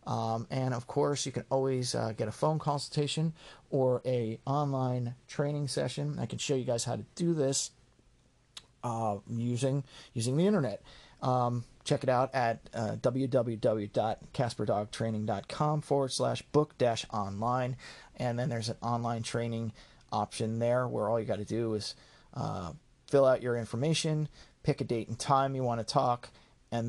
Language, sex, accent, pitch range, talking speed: English, male, American, 115-140 Hz, 160 wpm